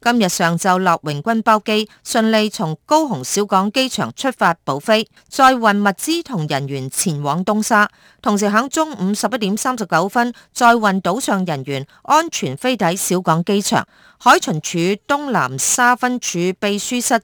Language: Chinese